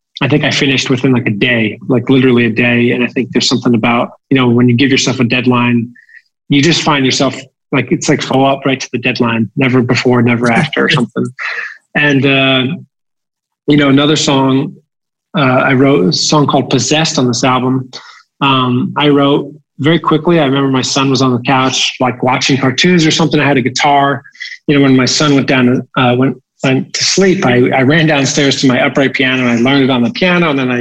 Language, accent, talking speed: English, American, 220 wpm